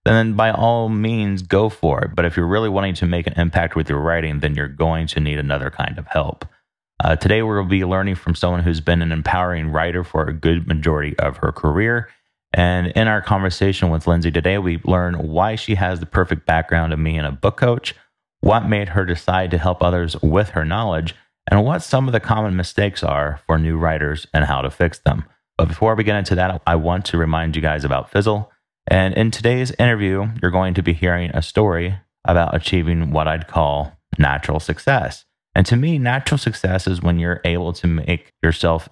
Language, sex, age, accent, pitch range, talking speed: English, male, 30-49, American, 80-100 Hz, 215 wpm